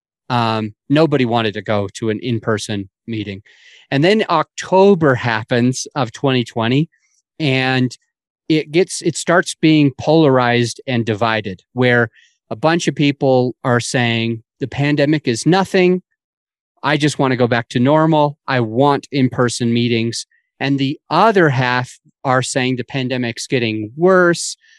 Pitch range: 120-155 Hz